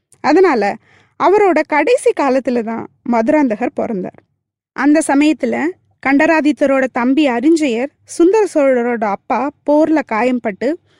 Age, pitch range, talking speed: 20-39, 235-325 Hz, 95 wpm